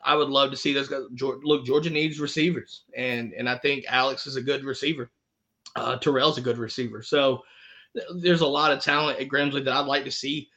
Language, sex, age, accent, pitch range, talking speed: English, male, 20-39, American, 130-155 Hz, 220 wpm